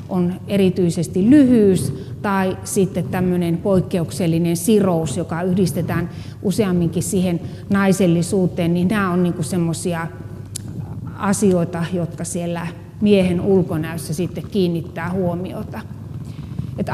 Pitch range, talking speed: 170-195 Hz, 90 wpm